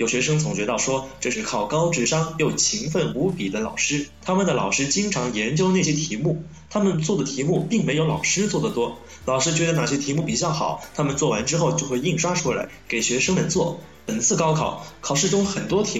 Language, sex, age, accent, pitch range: Chinese, male, 20-39, native, 130-185 Hz